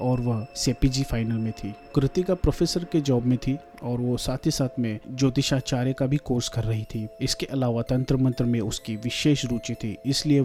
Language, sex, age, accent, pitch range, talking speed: Hindi, male, 30-49, native, 115-135 Hz, 205 wpm